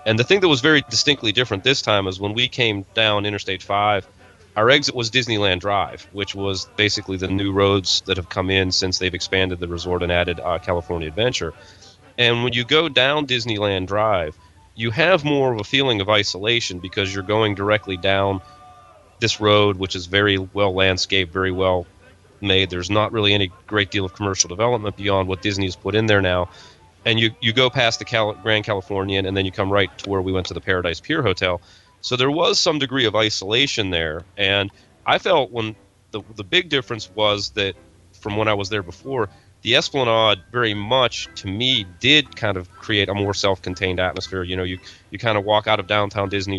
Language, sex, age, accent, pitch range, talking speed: English, male, 30-49, American, 95-110 Hz, 205 wpm